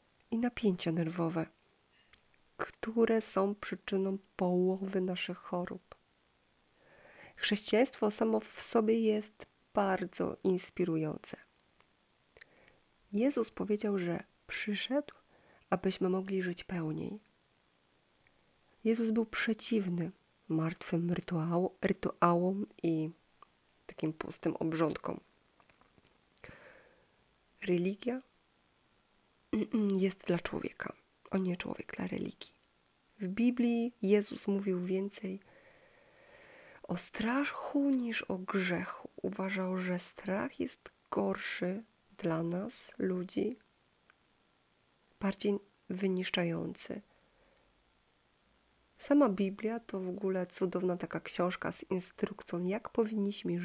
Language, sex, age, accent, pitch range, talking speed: Polish, female, 30-49, native, 180-220 Hz, 85 wpm